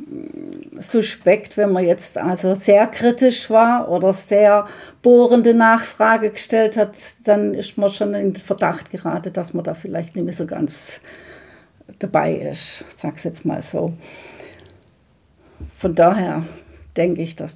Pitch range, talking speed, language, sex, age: 175-215 Hz, 140 wpm, German, female, 50-69